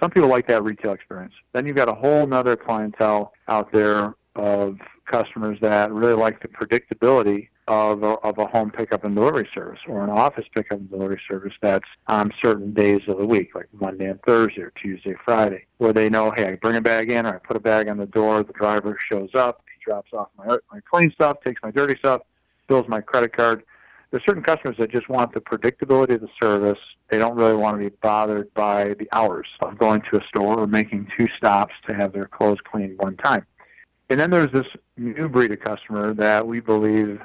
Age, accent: 50-69, American